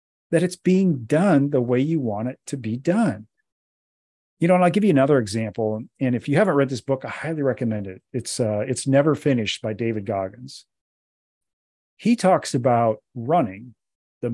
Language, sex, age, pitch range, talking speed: English, male, 40-59, 110-150 Hz, 185 wpm